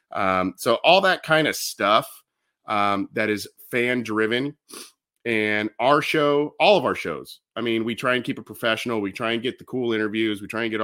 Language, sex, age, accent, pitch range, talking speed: English, male, 30-49, American, 85-110 Hz, 210 wpm